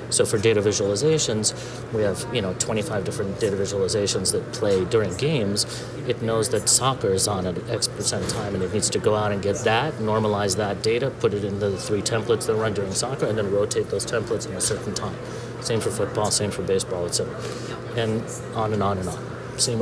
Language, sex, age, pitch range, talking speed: English, male, 30-49, 105-130 Hz, 220 wpm